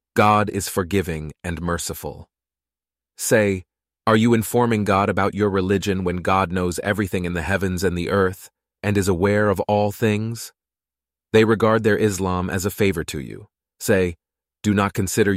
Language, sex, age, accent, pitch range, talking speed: English, male, 30-49, American, 90-115 Hz, 165 wpm